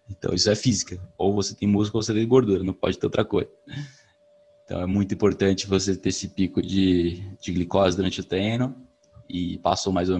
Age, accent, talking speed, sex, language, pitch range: 20-39, Brazilian, 205 wpm, male, Portuguese, 85-105 Hz